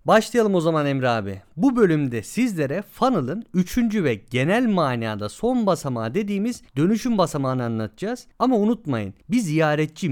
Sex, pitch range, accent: male, 130-205 Hz, native